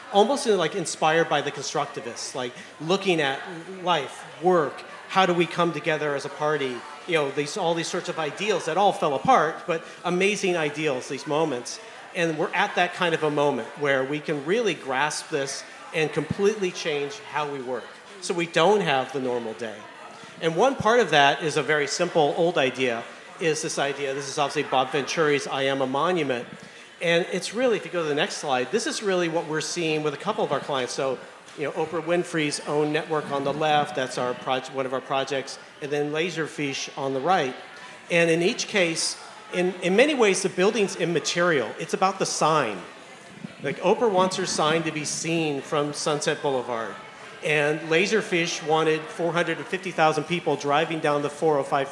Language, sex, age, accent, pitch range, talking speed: English, male, 40-59, American, 145-180 Hz, 190 wpm